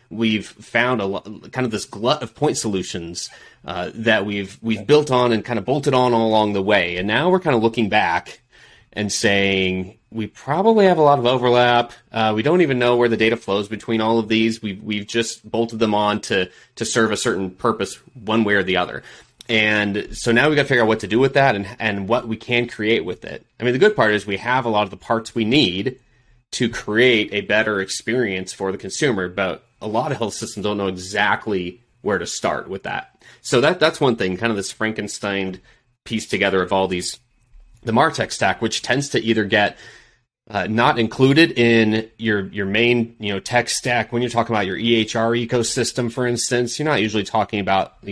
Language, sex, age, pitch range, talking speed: English, male, 30-49, 100-120 Hz, 220 wpm